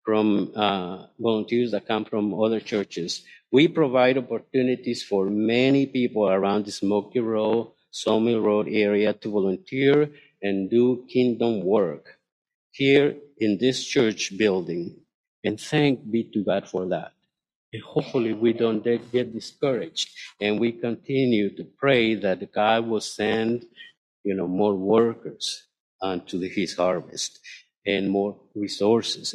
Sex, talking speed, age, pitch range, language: male, 130 wpm, 50-69, 105-125 Hz, English